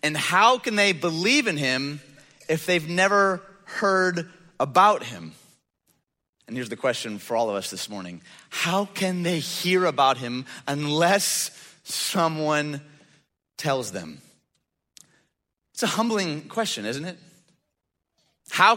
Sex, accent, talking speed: male, American, 130 wpm